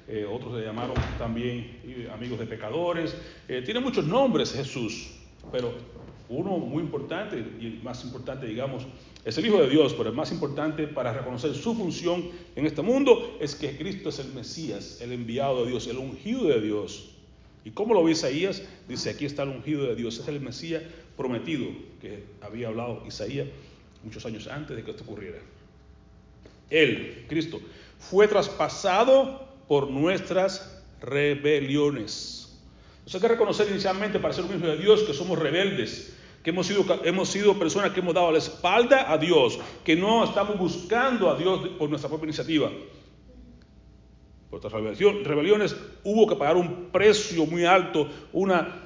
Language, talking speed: Spanish, 165 wpm